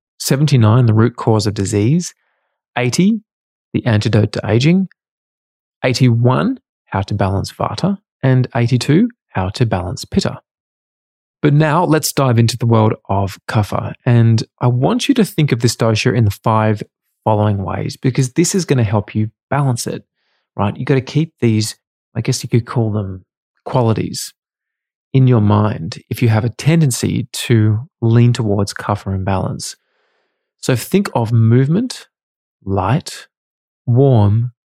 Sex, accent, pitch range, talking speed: male, Australian, 110-135 Hz, 150 wpm